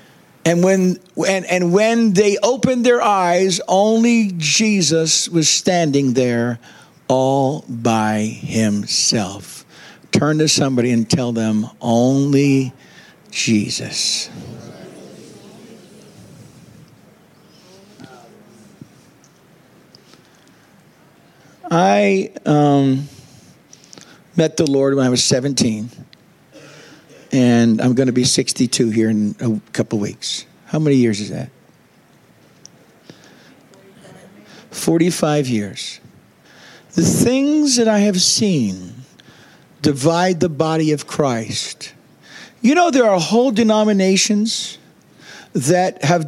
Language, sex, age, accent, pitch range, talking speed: English, male, 50-69, American, 130-195 Hz, 90 wpm